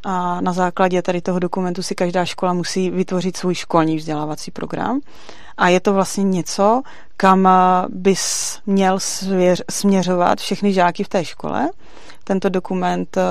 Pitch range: 175-200 Hz